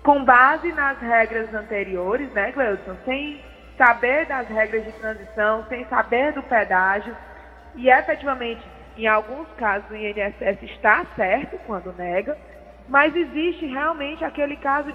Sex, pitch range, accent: female, 225-290 Hz, Brazilian